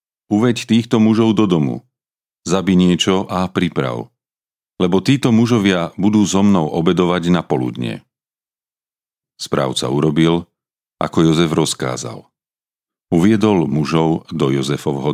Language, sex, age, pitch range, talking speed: Slovak, male, 40-59, 75-95 Hz, 105 wpm